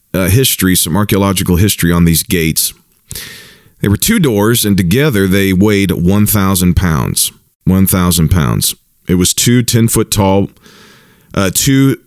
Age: 40-59